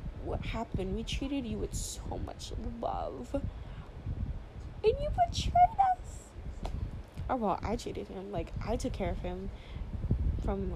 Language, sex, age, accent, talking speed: English, female, 10-29, American, 140 wpm